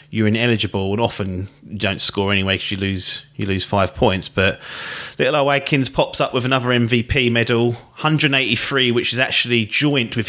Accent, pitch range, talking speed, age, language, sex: British, 105-125 Hz, 180 wpm, 30-49, English, male